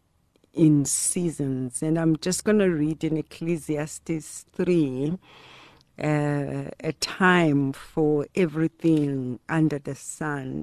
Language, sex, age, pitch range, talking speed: English, female, 60-79, 145-190 Hz, 100 wpm